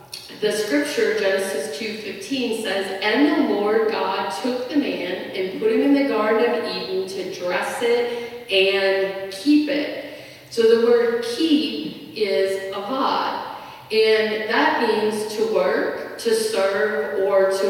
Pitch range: 195-290 Hz